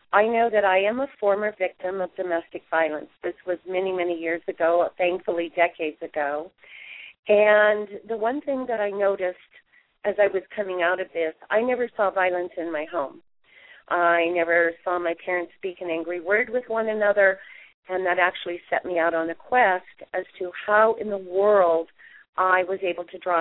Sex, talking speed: female, 185 wpm